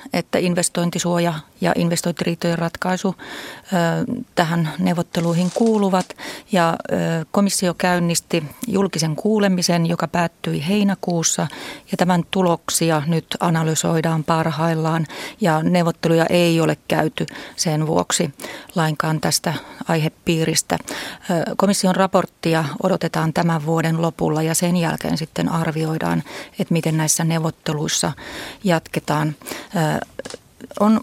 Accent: native